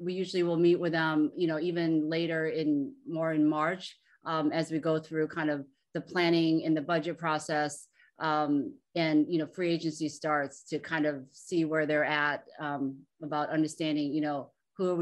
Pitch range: 150-170 Hz